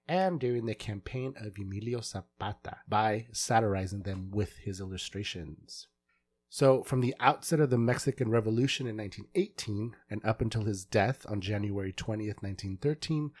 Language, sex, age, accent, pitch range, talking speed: English, male, 30-49, American, 105-130 Hz, 145 wpm